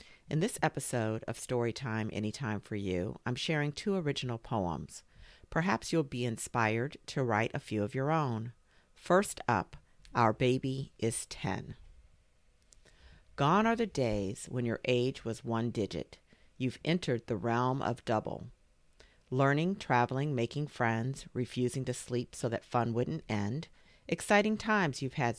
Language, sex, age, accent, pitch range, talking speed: English, female, 50-69, American, 115-145 Hz, 145 wpm